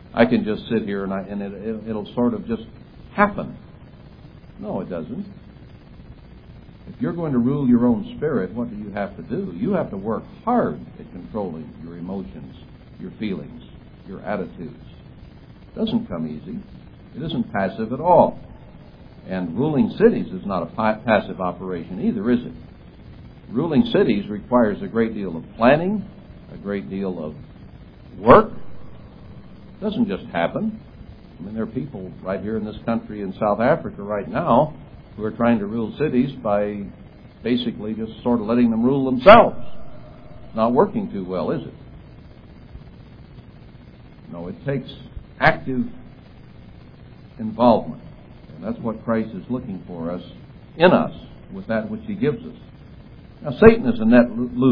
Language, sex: English, male